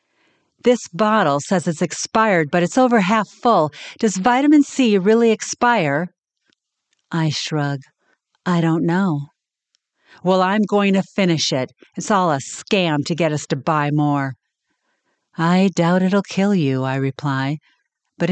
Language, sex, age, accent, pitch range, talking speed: English, female, 50-69, American, 150-215 Hz, 145 wpm